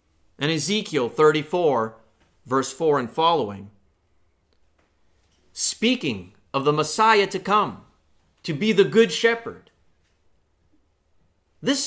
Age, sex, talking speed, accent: 40-59, male, 95 wpm, American